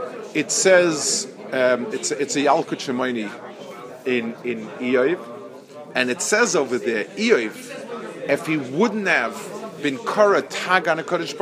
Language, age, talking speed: English, 40-59, 120 wpm